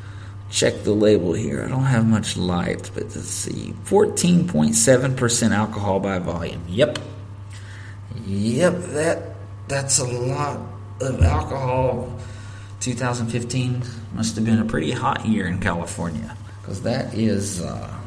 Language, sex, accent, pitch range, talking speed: English, male, American, 100-115 Hz, 130 wpm